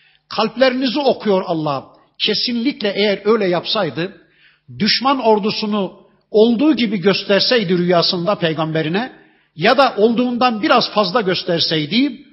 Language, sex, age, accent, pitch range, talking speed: Turkish, male, 50-69, native, 170-220 Hz, 95 wpm